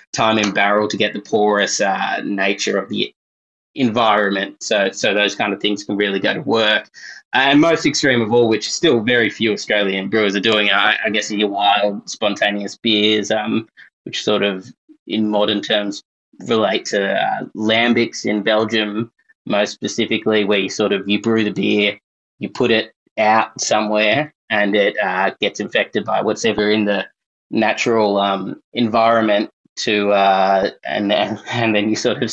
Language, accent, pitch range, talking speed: English, Australian, 100-115 Hz, 175 wpm